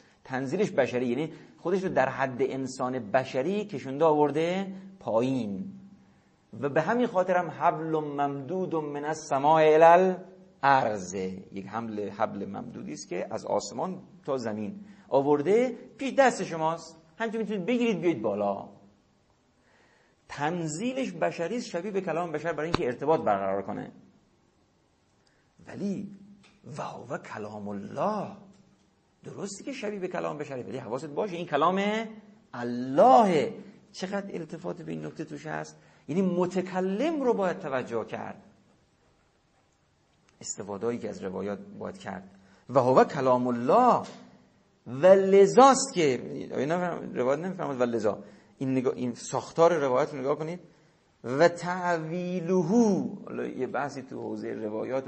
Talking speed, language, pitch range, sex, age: 125 wpm, Persian, 125-185 Hz, male, 50-69